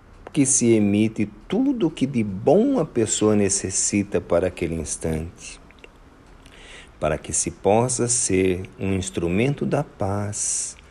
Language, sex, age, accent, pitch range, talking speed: Portuguese, male, 50-69, Brazilian, 85-115 Hz, 125 wpm